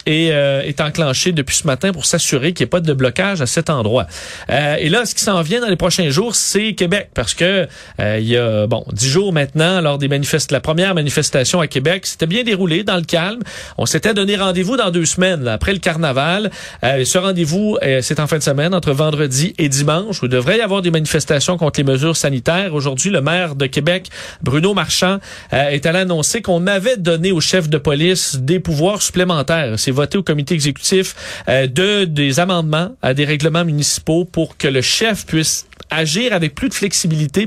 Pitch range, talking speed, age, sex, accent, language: 140-185 Hz, 215 wpm, 40-59, male, Canadian, French